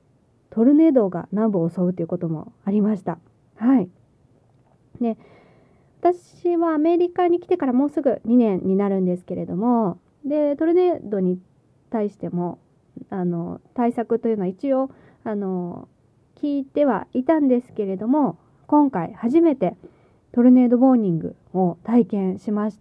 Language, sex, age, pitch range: Japanese, female, 20-39, 195-295 Hz